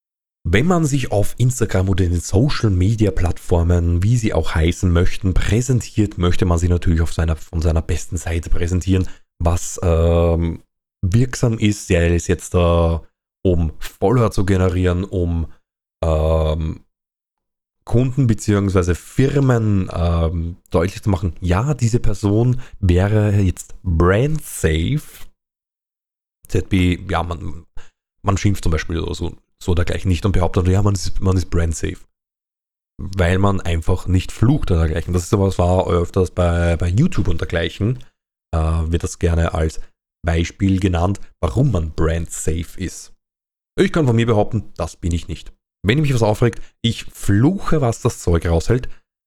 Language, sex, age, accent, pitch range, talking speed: German, male, 30-49, German, 85-105 Hz, 155 wpm